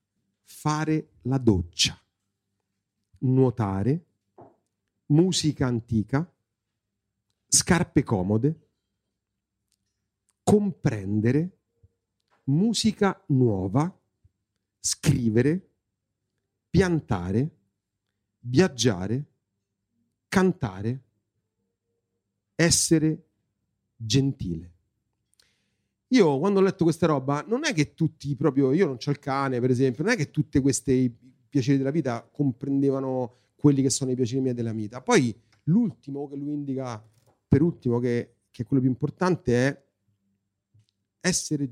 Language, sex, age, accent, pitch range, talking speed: Italian, male, 40-59, native, 105-145 Hz, 95 wpm